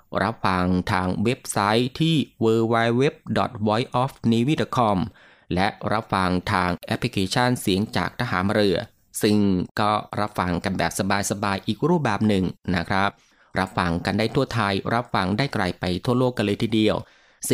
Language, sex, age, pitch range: Thai, male, 20-39, 100-125 Hz